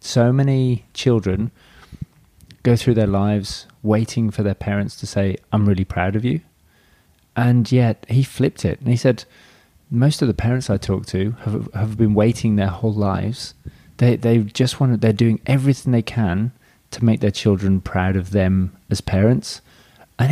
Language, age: English, 20-39